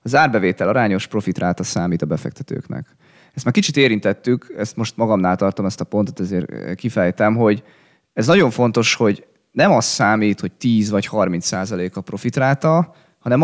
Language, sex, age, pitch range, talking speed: Hungarian, male, 20-39, 95-130 Hz, 160 wpm